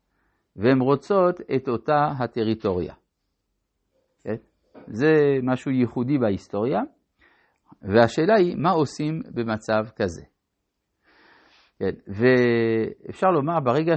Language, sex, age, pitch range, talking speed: Hebrew, male, 50-69, 115-180 Hz, 85 wpm